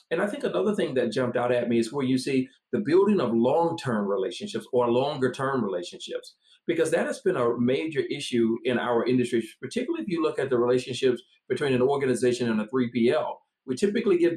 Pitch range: 125-205 Hz